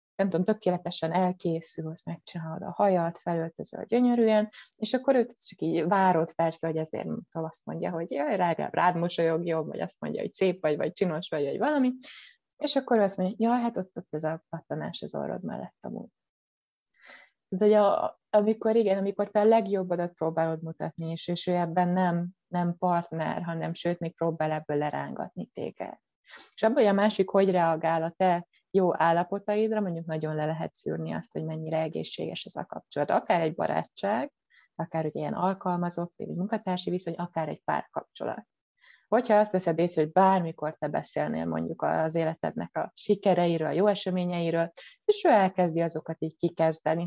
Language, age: Hungarian, 20-39